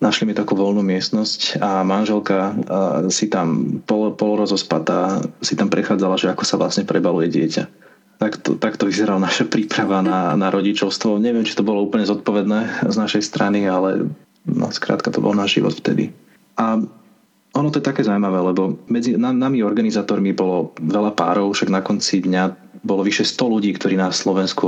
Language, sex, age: Slovak, male, 30-49